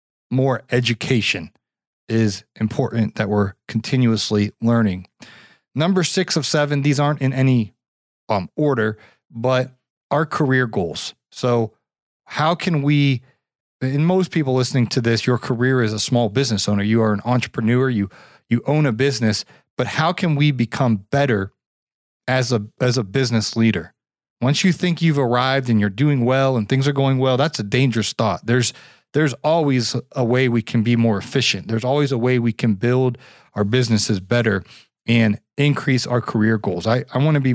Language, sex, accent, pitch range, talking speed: English, male, American, 110-140 Hz, 175 wpm